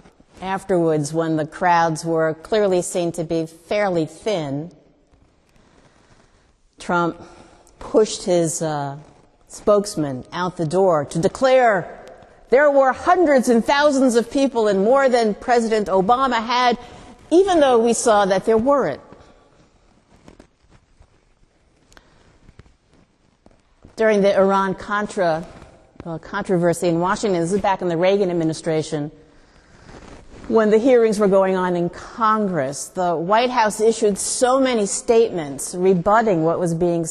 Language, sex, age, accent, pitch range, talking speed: English, female, 50-69, American, 165-220 Hz, 120 wpm